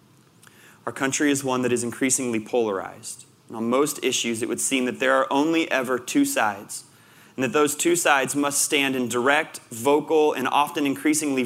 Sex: male